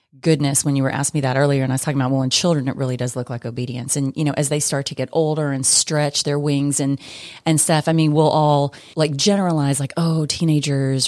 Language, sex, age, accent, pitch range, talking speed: English, female, 30-49, American, 135-160 Hz, 255 wpm